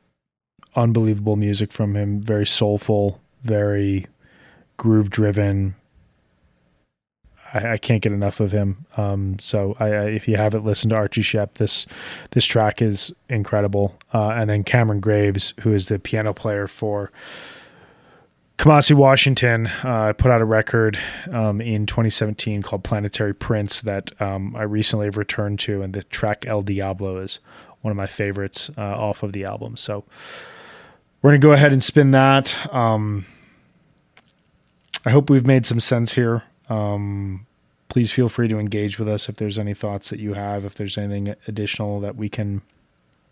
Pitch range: 100-115 Hz